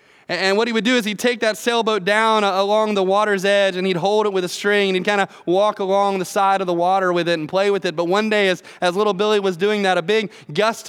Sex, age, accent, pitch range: male, 20-39, American, 175-220 Hz